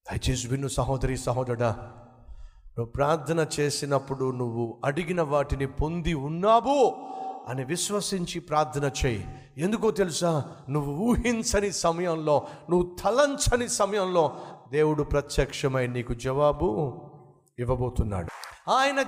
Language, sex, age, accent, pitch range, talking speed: Telugu, male, 50-69, native, 125-175 Hz, 75 wpm